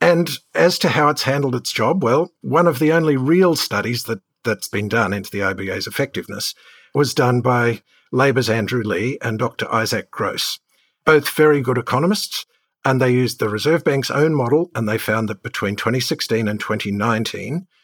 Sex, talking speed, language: male, 175 wpm, English